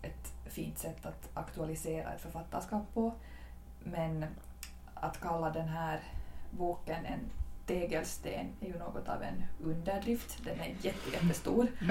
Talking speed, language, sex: 125 wpm, Swedish, female